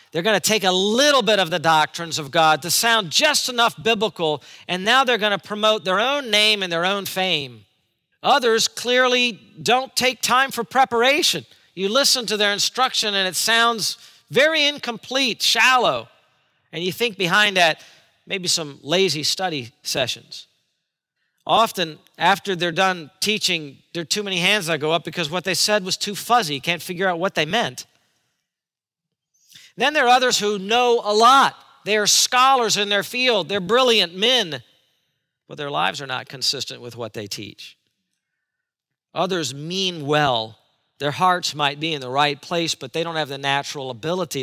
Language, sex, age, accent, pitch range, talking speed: English, male, 40-59, American, 150-215 Hz, 175 wpm